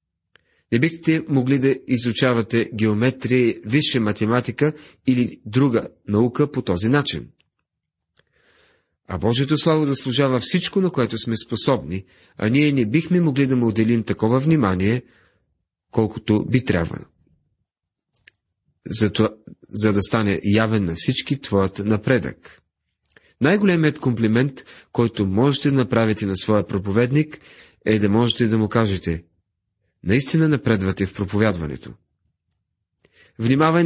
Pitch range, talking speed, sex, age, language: 100-135 Hz, 115 wpm, male, 40-59, Bulgarian